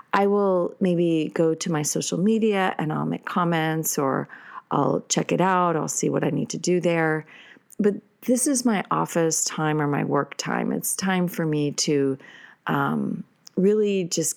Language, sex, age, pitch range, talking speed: English, female, 40-59, 160-205 Hz, 180 wpm